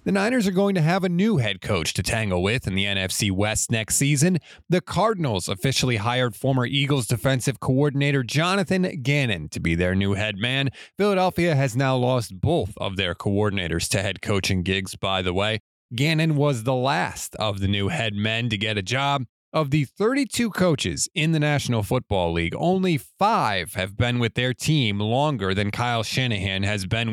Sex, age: male, 30-49